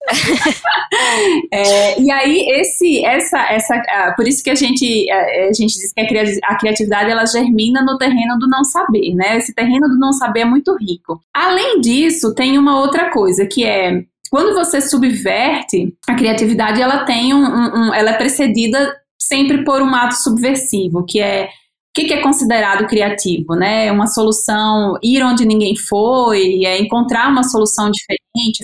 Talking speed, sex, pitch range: 165 wpm, female, 200-265 Hz